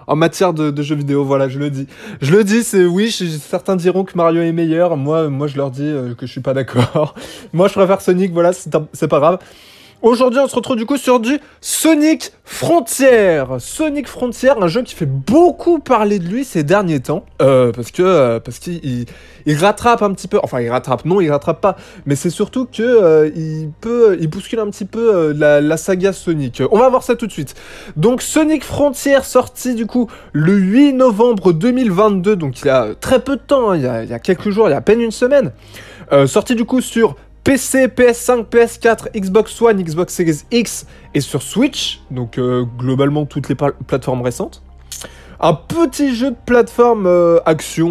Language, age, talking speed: French, 20-39, 210 wpm